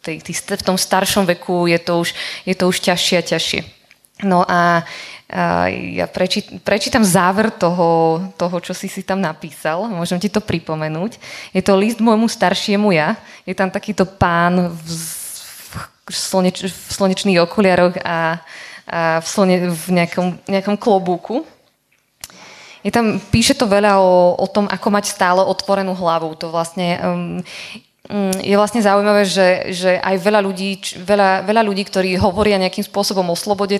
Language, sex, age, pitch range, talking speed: Slovak, female, 20-39, 175-205 Hz, 160 wpm